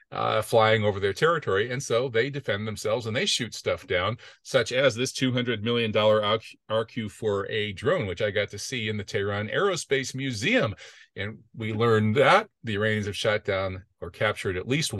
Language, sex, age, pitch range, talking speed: English, male, 40-59, 105-135 Hz, 195 wpm